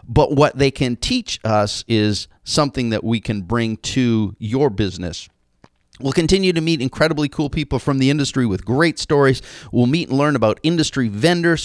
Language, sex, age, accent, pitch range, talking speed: English, male, 40-59, American, 115-170 Hz, 180 wpm